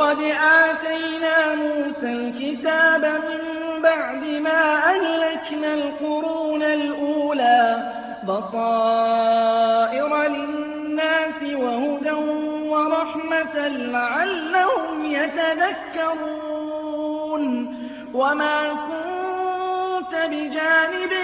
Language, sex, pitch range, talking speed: Arabic, male, 290-320 Hz, 50 wpm